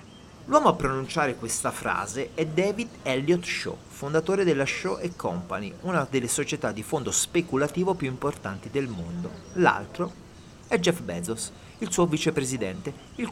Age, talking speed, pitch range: 40-59, 140 wpm, 120-170 Hz